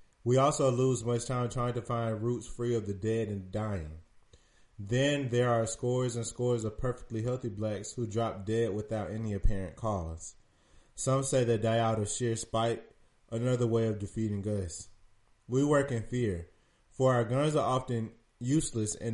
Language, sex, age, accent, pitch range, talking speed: English, male, 20-39, American, 105-120 Hz, 175 wpm